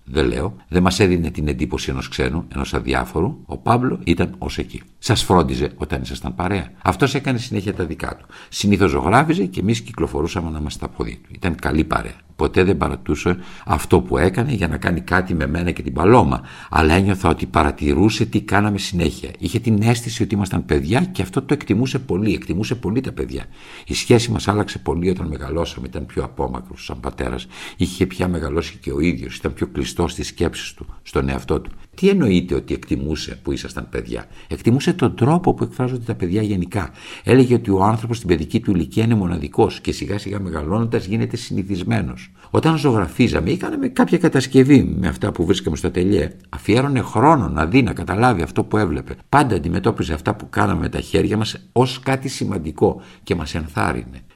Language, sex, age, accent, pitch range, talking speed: Greek, male, 60-79, Spanish, 75-110 Hz, 185 wpm